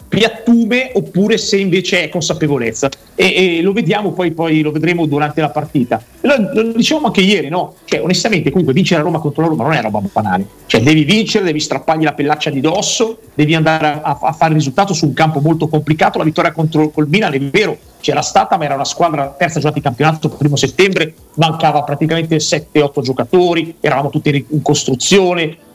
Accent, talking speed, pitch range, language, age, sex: native, 195 wpm, 150-185 Hz, Italian, 40-59, male